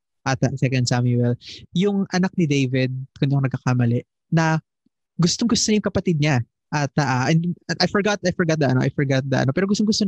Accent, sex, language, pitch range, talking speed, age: native, male, Filipino, 140-185 Hz, 190 wpm, 20-39